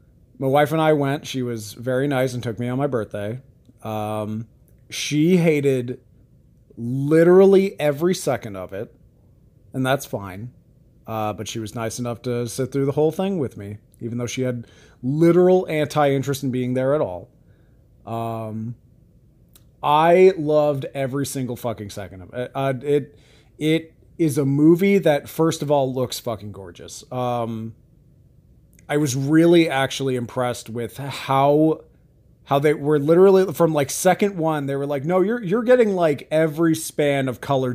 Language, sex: English, male